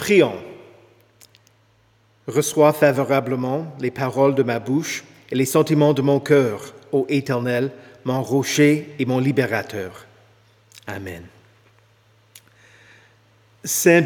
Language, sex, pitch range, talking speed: French, male, 115-160 Hz, 100 wpm